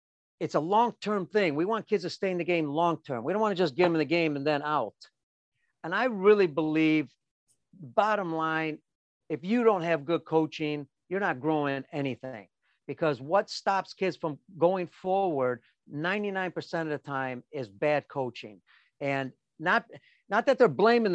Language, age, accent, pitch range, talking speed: English, 50-69, American, 150-185 Hz, 175 wpm